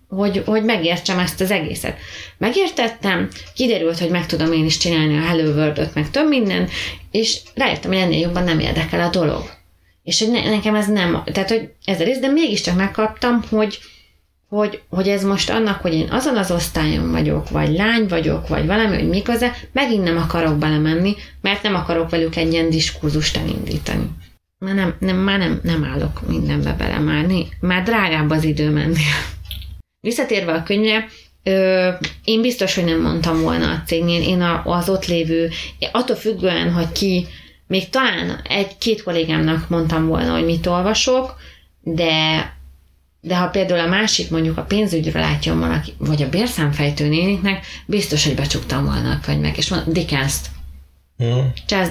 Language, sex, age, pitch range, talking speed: English, female, 30-49, 150-200 Hz, 160 wpm